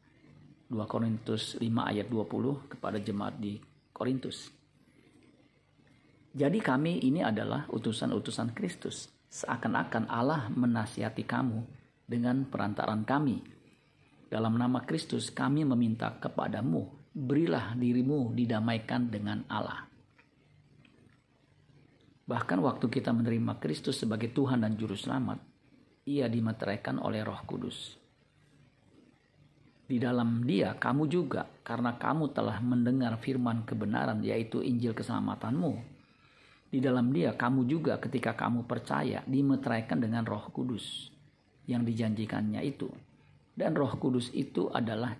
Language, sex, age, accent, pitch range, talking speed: Indonesian, male, 50-69, native, 110-130 Hz, 110 wpm